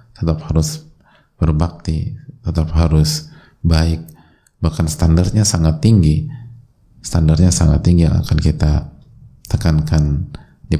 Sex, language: male, Indonesian